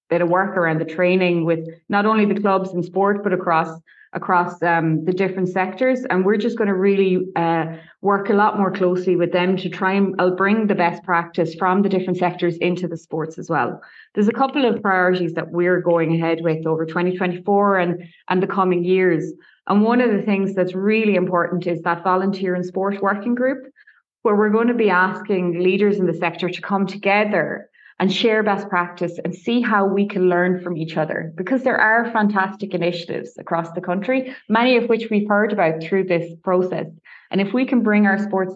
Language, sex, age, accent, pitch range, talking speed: English, female, 20-39, Irish, 175-205 Hz, 205 wpm